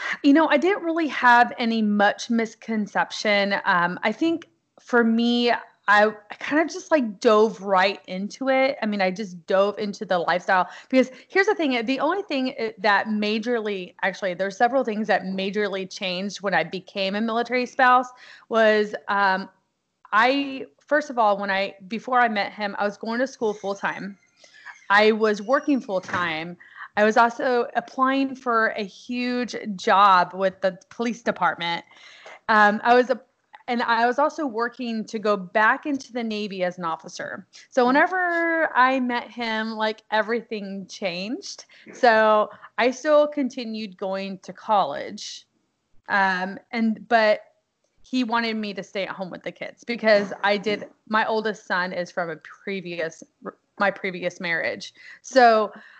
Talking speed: 160 wpm